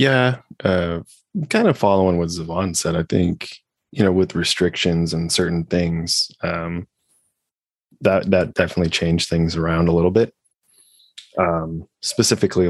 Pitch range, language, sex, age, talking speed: 85-90 Hz, English, male, 20-39, 135 wpm